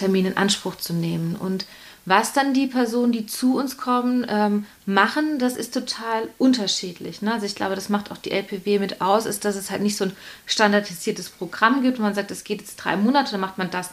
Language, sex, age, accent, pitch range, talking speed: German, female, 30-49, German, 190-230 Hz, 230 wpm